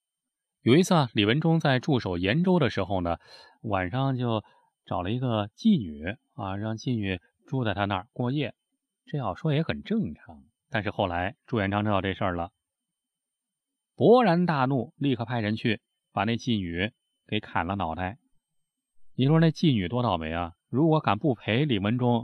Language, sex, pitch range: Chinese, male, 100-155 Hz